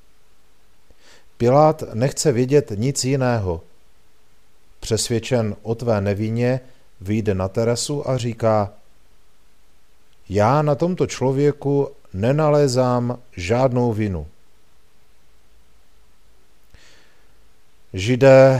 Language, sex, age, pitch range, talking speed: Czech, male, 40-59, 100-120 Hz, 70 wpm